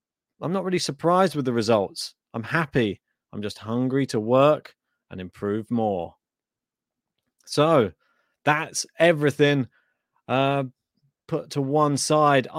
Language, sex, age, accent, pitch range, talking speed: English, male, 30-49, British, 135-175 Hz, 120 wpm